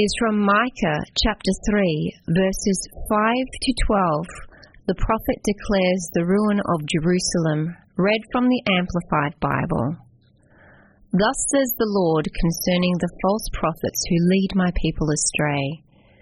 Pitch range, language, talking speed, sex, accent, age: 160-210 Hz, English, 125 wpm, female, Australian, 30-49